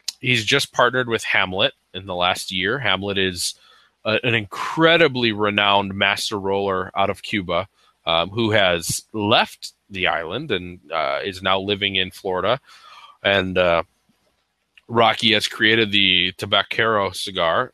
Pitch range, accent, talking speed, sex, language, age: 100-145 Hz, American, 135 wpm, male, English, 20-39